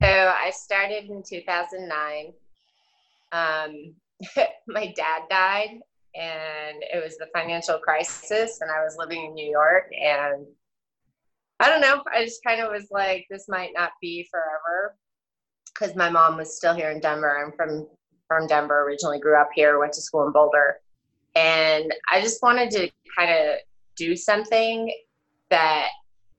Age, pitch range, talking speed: 20-39, 155-195 Hz, 155 wpm